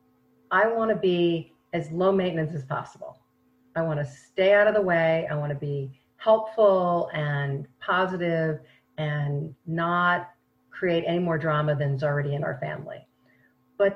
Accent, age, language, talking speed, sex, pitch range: American, 40-59, English, 155 wpm, female, 150-195 Hz